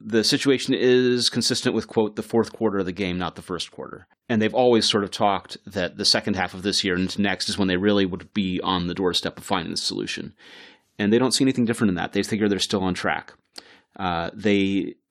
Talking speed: 240 wpm